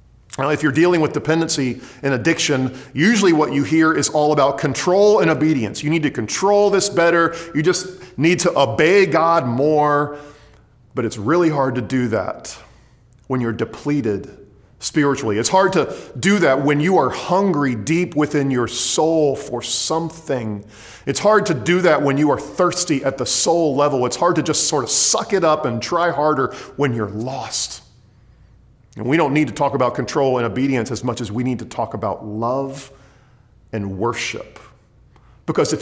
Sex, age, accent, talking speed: male, 40-59, American, 180 wpm